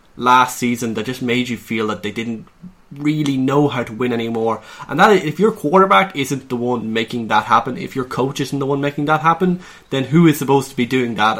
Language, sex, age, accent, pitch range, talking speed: English, male, 20-39, Irish, 115-140 Hz, 230 wpm